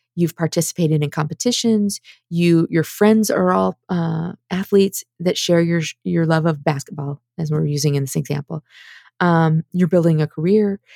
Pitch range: 150-185 Hz